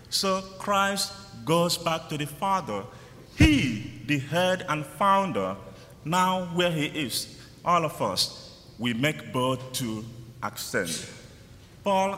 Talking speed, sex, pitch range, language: 125 wpm, male, 115-155 Hz, English